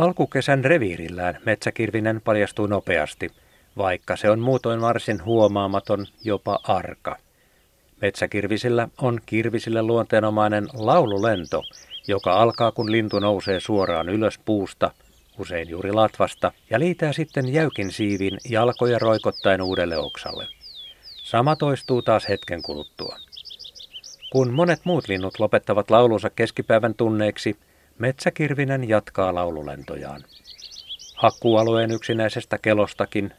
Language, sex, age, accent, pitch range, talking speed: Finnish, male, 50-69, native, 95-115 Hz, 100 wpm